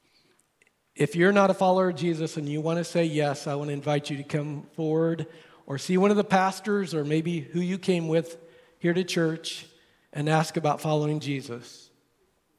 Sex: male